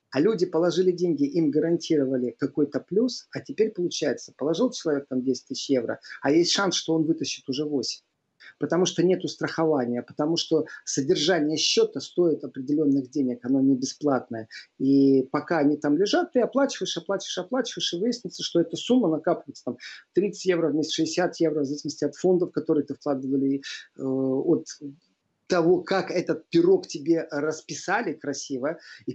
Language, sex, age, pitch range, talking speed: Russian, male, 40-59, 140-180 Hz, 160 wpm